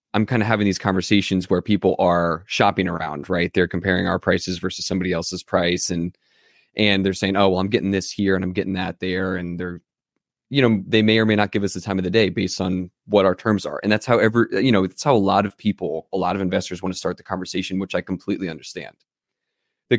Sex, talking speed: male, 250 wpm